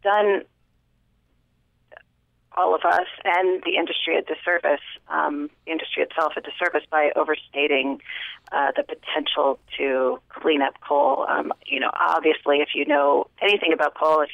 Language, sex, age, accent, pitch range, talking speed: English, female, 30-49, American, 140-165 Hz, 145 wpm